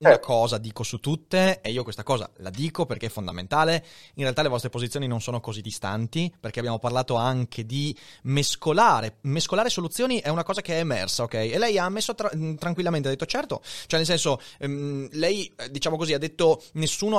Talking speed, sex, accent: 200 wpm, male, native